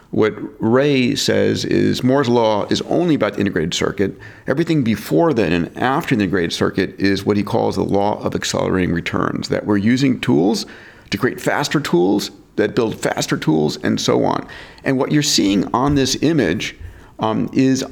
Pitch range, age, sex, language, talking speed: 100-135 Hz, 40-59, male, English, 180 wpm